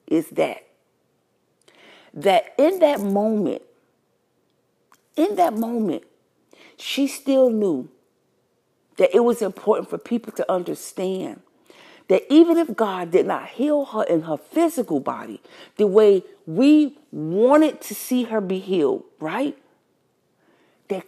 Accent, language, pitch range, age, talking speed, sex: American, English, 200-255 Hz, 50-69, 120 wpm, female